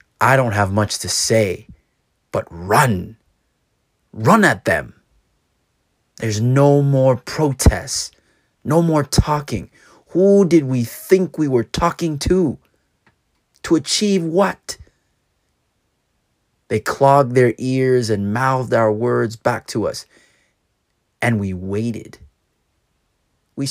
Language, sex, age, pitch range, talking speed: English, male, 30-49, 105-135 Hz, 110 wpm